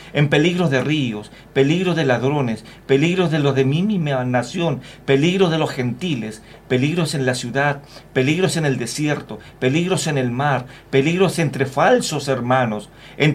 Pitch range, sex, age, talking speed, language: 125-155 Hz, male, 50-69, 155 wpm, Spanish